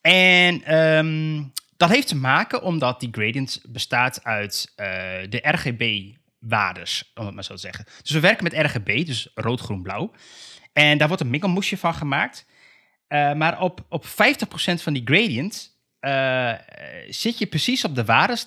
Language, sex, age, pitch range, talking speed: Dutch, male, 20-39, 115-170 Hz, 160 wpm